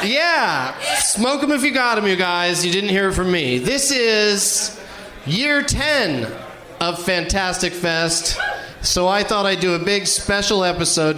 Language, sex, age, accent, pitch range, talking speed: English, male, 30-49, American, 150-200 Hz, 165 wpm